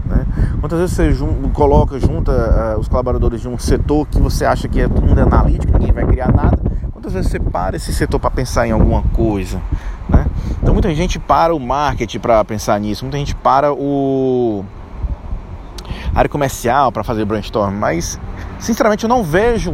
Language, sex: Portuguese, male